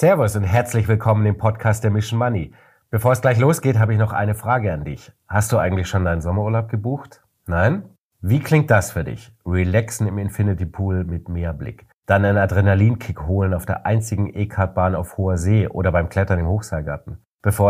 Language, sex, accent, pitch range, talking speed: German, male, German, 95-115 Hz, 195 wpm